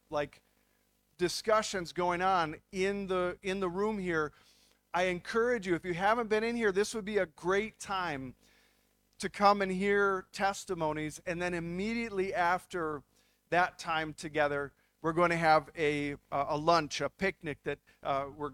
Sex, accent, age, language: male, American, 40-59, English